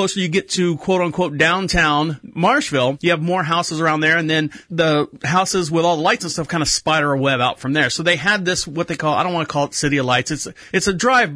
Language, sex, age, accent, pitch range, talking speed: English, male, 30-49, American, 160-200 Hz, 275 wpm